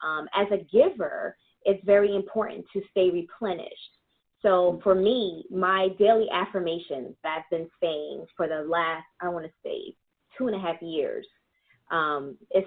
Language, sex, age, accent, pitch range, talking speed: English, female, 20-39, American, 165-200 Hz, 150 wpm